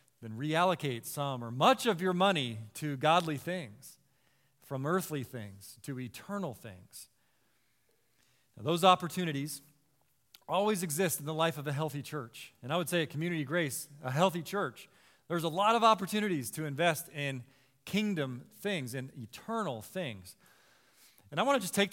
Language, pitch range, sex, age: English, 135-190 Hz, male, 40-59